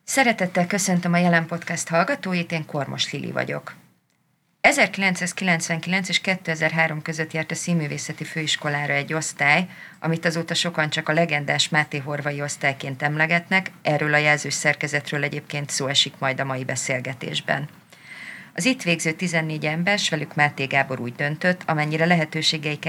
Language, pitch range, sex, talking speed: Hungarian, 145-170 Hz, female, 140 wpm